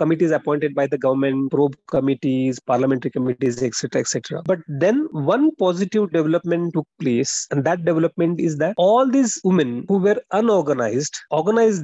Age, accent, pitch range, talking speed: 30-49, Indian, 140-175 Hz, 150 wpm